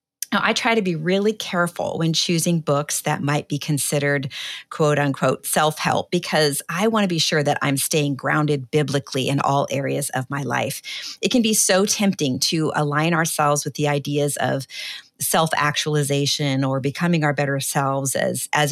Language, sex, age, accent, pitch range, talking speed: English, female, 40-59, American, 145-180 Hz, 175 wpm